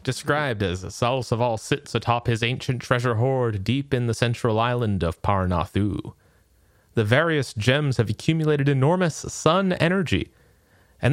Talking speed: 135 wpm